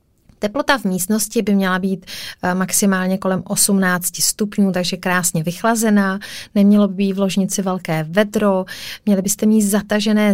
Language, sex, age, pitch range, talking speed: Czech, female, 30-49, 175-200 Hz, 140 wpm